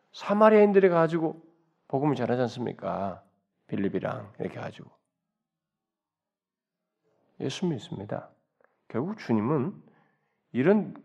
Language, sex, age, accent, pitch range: Korean, male, 40-59, native, 95-150 Hz